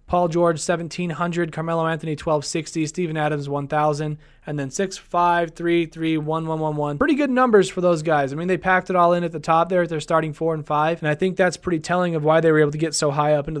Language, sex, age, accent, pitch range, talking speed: English, male, 20-39, American, 155-185 Hz, 255 wpm